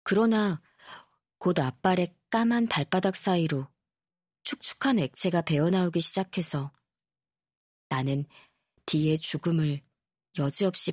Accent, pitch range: native, 145-185 Hz